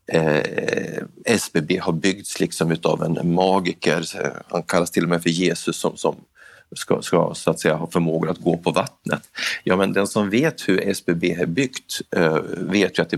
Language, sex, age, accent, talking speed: Swedish, male, 30-49, native, 190 wpm